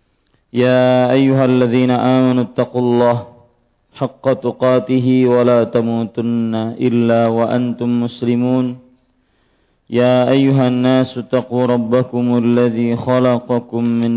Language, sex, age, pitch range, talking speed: Malay, male, 50-69, 120-125 Hz, 90 wpm